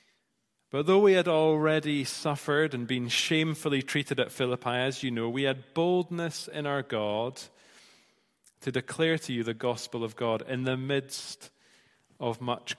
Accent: British